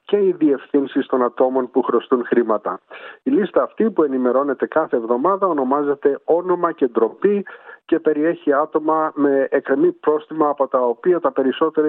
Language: Greek